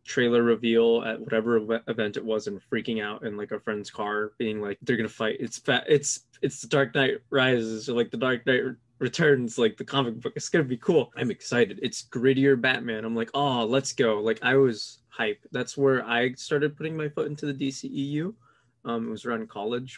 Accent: American